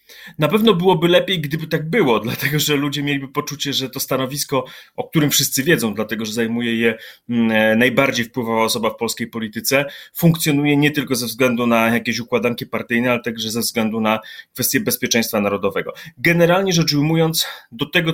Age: 30-49